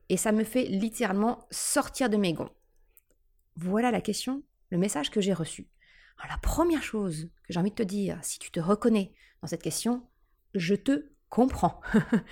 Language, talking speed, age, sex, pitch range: French, 175 wpm, 30-49, female, 190-260 Hz